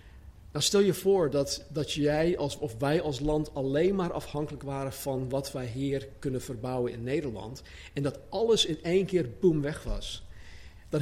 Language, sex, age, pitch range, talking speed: Dutch, male, 50-69, 120-155 Hz, 185 wpm